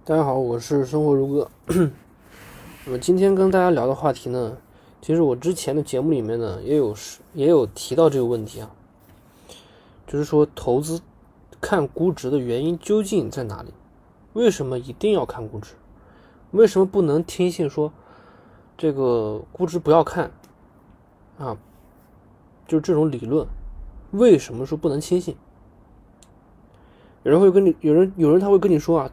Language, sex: Chinese, male